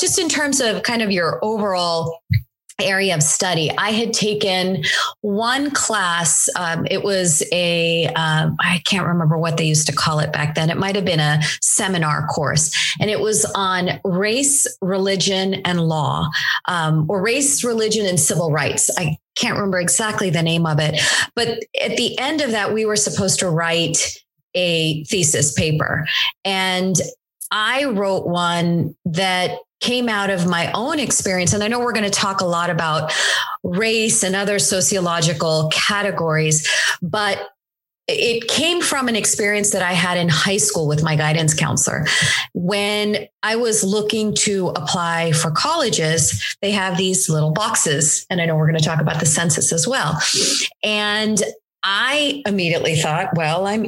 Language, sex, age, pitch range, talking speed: English, female, 30-49, 160-210 Hz, 165 wpm